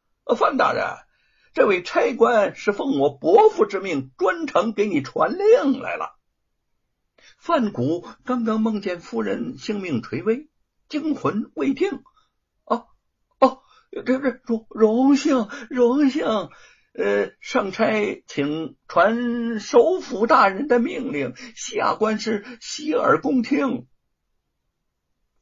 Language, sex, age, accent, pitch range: Chinese, male, 60-79, native, 220-310 Hz